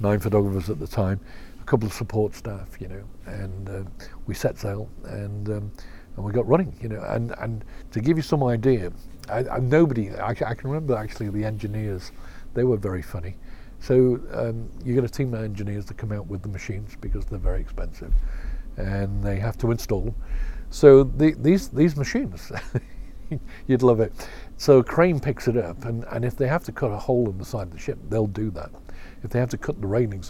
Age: 50-69